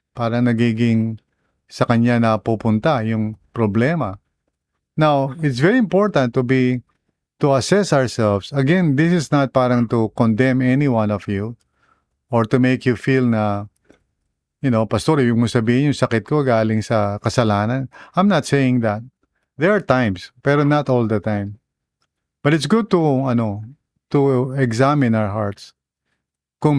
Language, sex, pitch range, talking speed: English, male, 110-145 Hz, 150 wpm